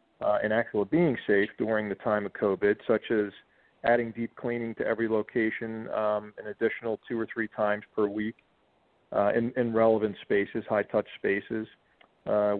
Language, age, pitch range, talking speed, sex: English, 40-59, 105-120 Hz, 170 wpm, male